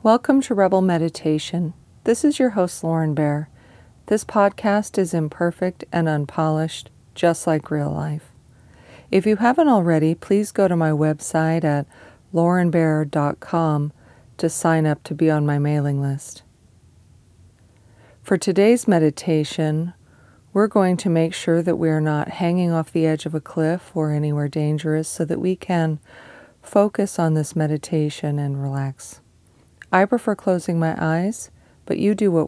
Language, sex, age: English, female, 40-59